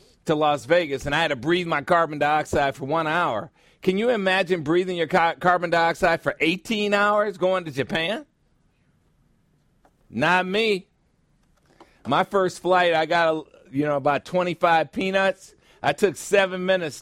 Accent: American